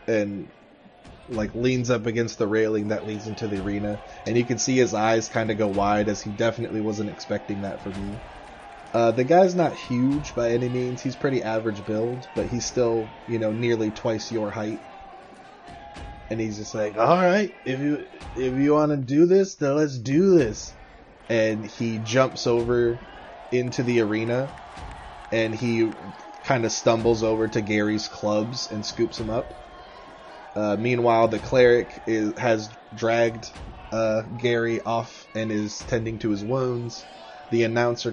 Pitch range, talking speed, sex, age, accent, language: 105-120 Hz, 170 wpm, male, 20-39, American, English